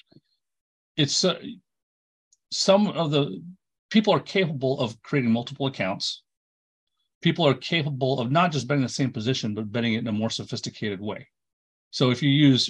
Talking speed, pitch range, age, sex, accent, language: 160 wpm, 115-140 Hz, 40-59, male, American, English